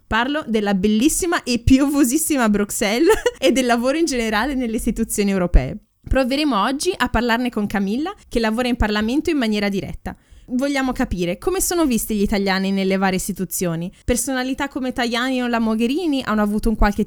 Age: 20-39